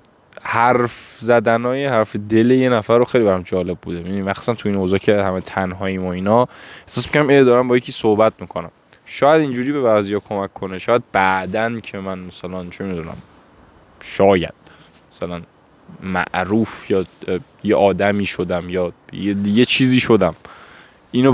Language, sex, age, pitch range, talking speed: Persian, male, 10-29, 95-120 Hz, 150 wpm